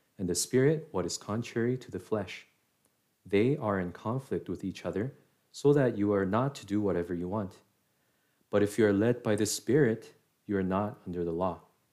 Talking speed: 200 wpm